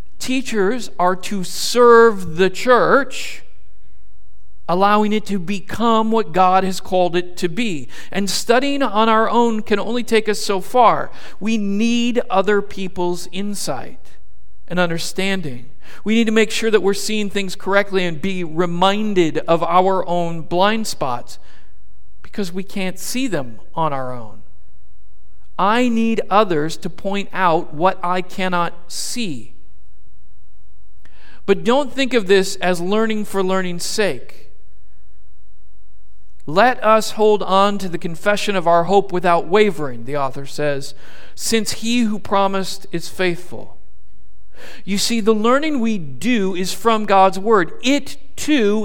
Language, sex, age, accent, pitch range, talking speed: English, male, 50-69, American, 155-220 Hz, 140 wpm